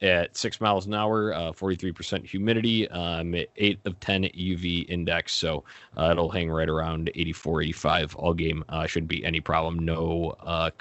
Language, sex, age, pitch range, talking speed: English, male, 20-39, 85-100 Hz, 180 wpm